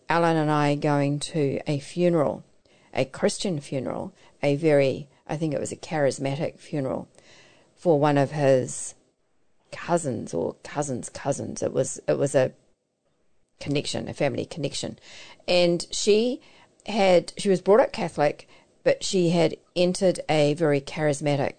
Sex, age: female, 50-69